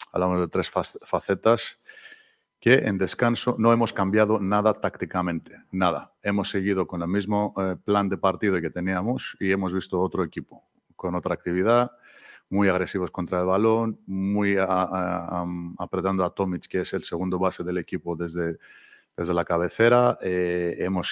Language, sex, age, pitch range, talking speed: Spanish, male, 40-59, 85-100 Hz, 145 wpm